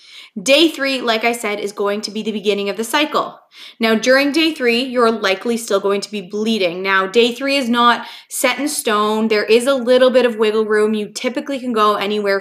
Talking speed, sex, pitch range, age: 220 wpm, female, 205-255 Hz, 20-39